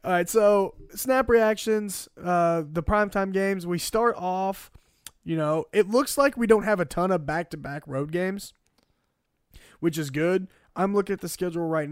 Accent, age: American, 20-39